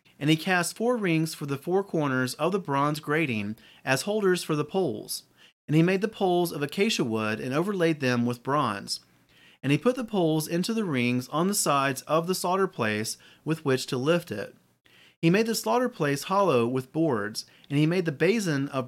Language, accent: English, American